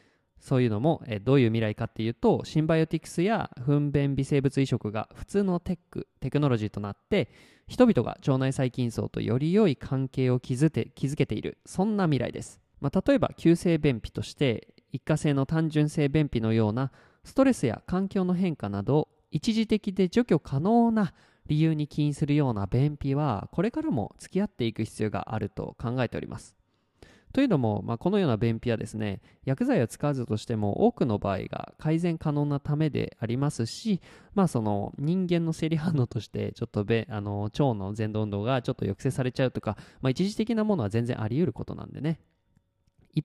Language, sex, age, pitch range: Japanese, male, 20-39, 110-160 Hz